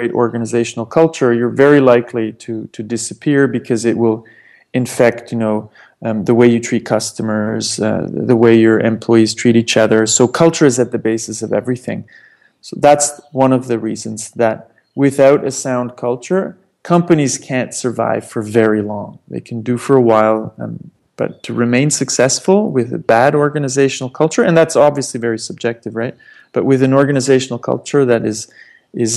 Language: English